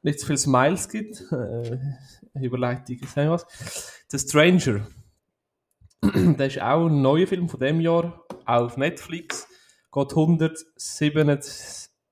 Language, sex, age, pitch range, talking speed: German, male, 20-39, 130-170 Hz, 130 wpm